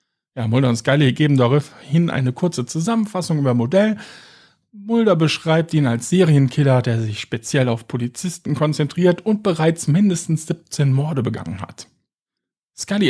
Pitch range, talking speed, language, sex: 130-180 Hz, 135 wpm, German, male